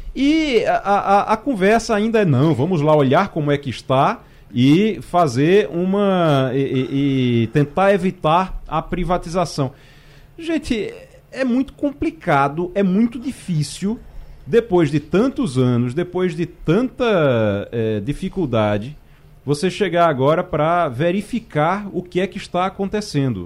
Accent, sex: Brazilian, male